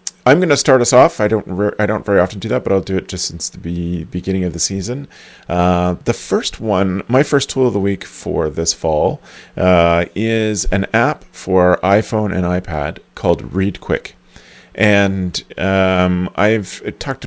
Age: 30-49